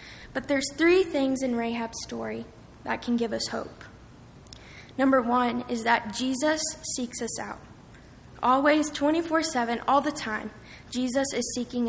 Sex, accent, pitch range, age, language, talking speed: female, American, 230-260 Hz, 10-29, English, 140 wpm